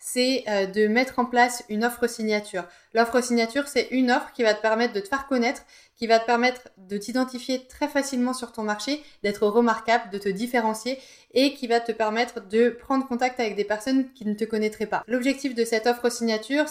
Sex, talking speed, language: female, 210 wpm, French